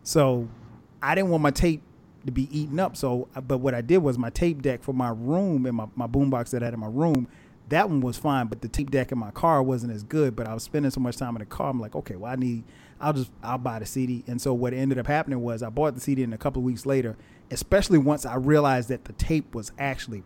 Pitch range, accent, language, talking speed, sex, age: 120-140 Hz, American, English, 280 wpm, male, 30-49